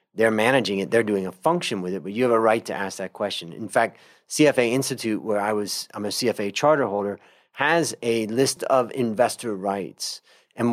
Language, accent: English, American